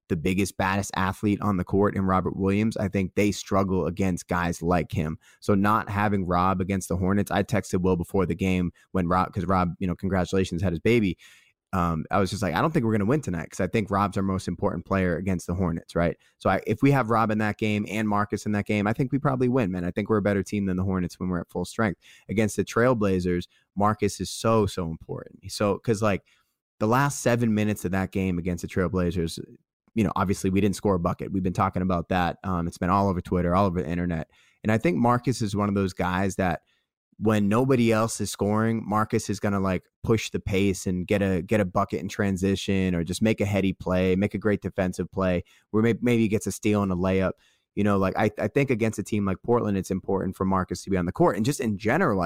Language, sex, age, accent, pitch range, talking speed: English, male, 20-39, American, 95-105 Hz, 250 wpm